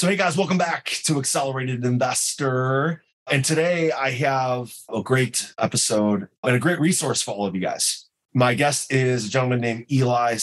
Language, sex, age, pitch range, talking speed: English, male, 30-49, 115-145 Hz, 180 wpm